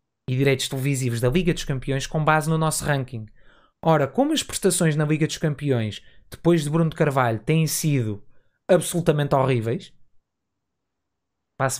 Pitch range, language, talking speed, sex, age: 135-175 Hz, Portuguese, 155 wpm, male, 20-39